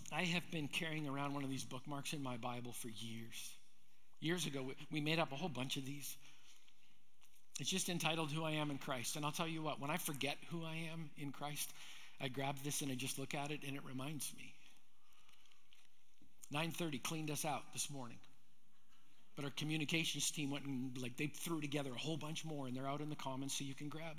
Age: 50-69